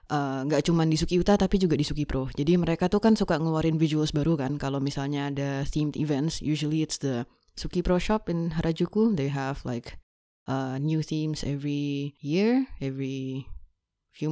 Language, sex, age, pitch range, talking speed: Indonesian, female, 20-39, 150-185 Hz, 180 wpm